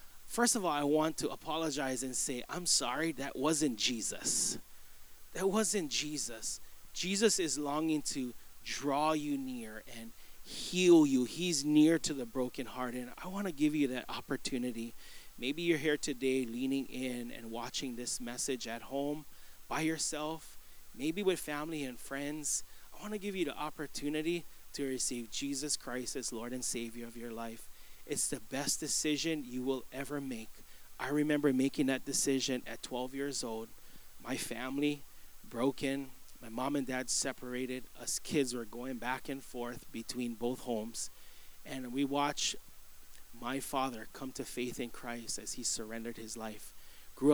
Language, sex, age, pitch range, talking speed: English, male, 30-49, 120-150 Hz, 165 wpm